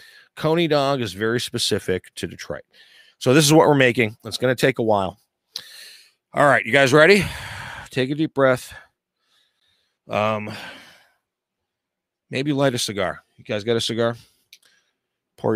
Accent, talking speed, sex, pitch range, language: American, 150 wpm, male, 105-140 Hz, English